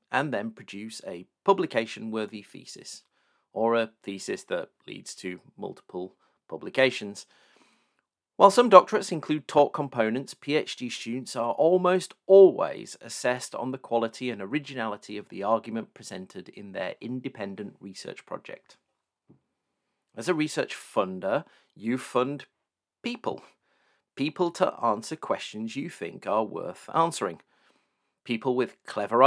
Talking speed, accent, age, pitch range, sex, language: 120 wpm, British, 40-59, 110-155 Hz, male, English